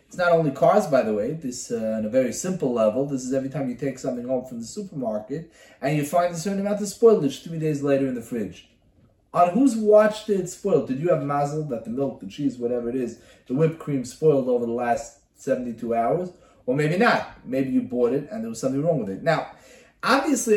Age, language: 30-49, English